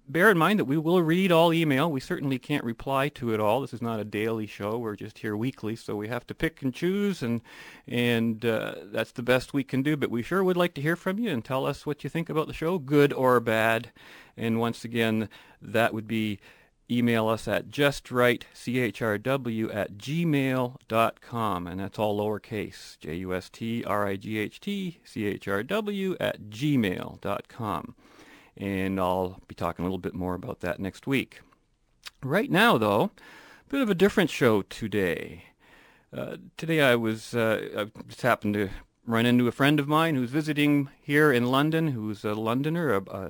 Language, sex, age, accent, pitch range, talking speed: English, male, 40-59, American, 105-145 Hz, 180 wpm